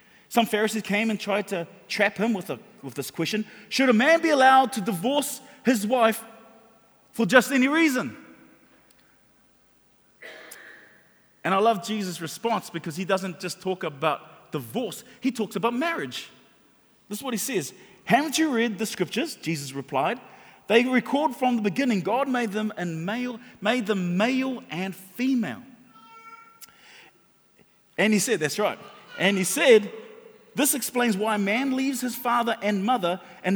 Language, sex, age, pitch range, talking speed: English, male, 30-49, 195-245 Hz, 155 wpm